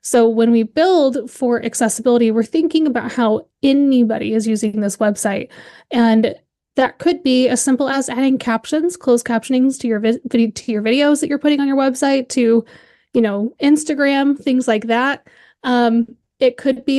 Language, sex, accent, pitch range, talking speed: English, female, American, 230-280 Hz, 175 wpm